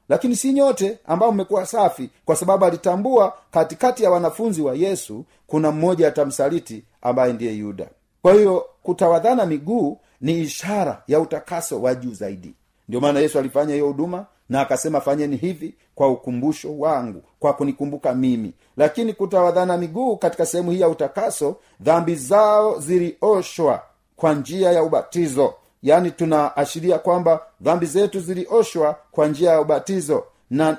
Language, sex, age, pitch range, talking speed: Swahili, male, 40-59, 140-185 Hz, 140 wpm